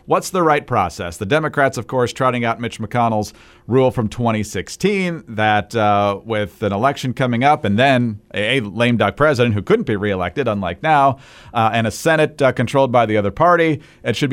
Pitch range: 110-150 Hz